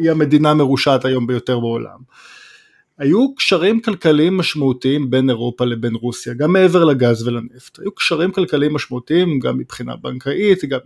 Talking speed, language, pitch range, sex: 145 wpm, Hebrew, 130-165 Hz, male